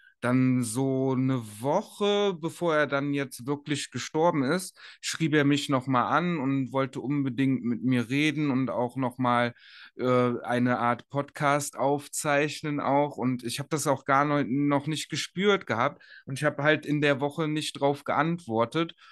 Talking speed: 155 wpm